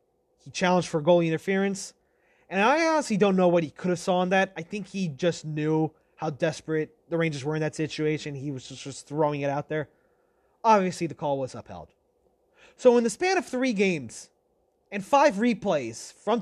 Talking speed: 195 wpm